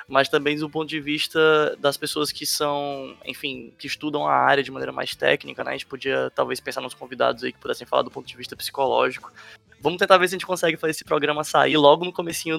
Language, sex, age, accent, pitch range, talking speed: Portuguese, male, 20-39, Brazilian, 140-160 Hz, 240 wpm